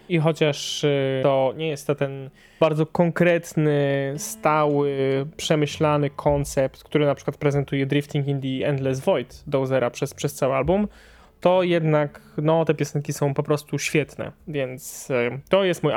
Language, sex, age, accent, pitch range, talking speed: Polish, male, 20-39, native, 135-155 Hz, 145 wpm